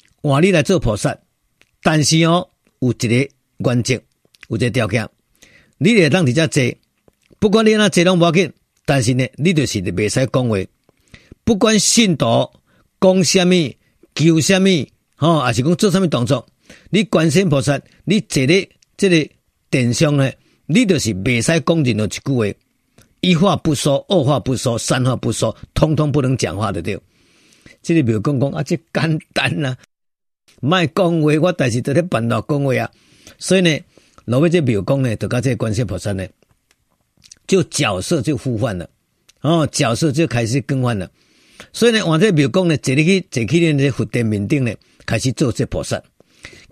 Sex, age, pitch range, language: male, 50-69, 125-175 Hz, Chinese